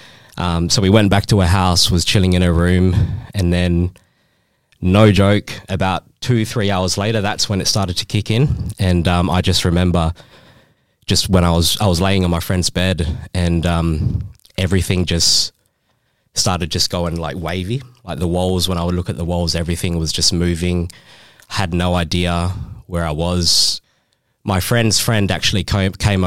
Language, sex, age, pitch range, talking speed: English, male, 20-39, 85-100 Hz, 180 wpm